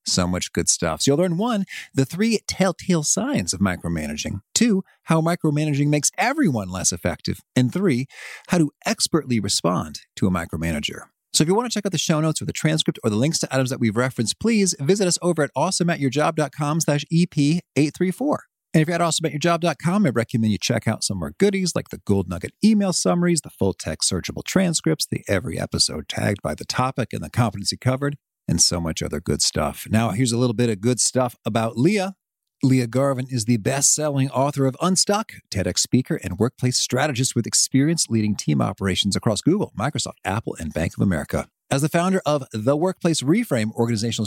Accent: American